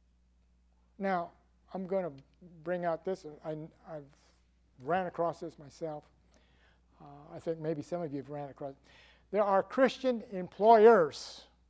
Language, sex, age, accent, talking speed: English, male, 60-79, American, 140 wpm